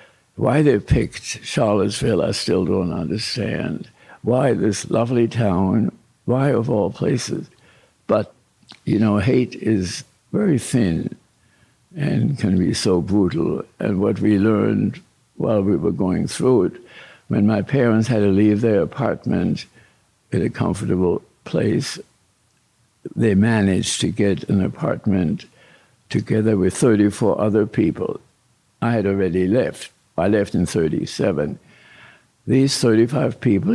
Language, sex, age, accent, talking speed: English, male, 60-79, American, 130 wpm